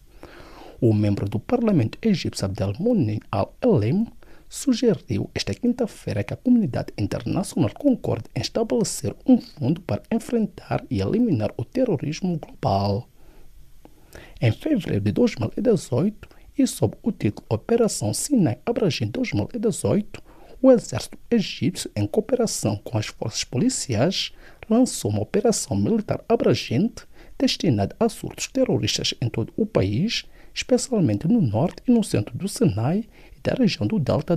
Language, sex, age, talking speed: English, male, 50-69, 125 wpm